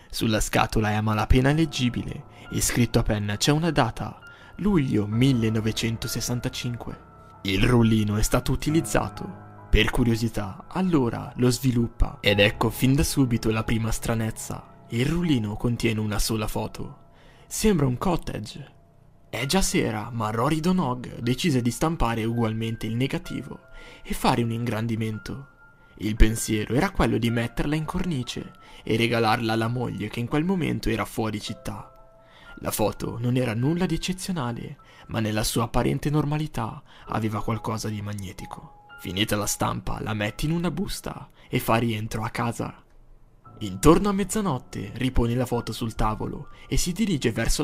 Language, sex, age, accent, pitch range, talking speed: Italian, male, 20-39, native, 110-140 Hz, 150 wpm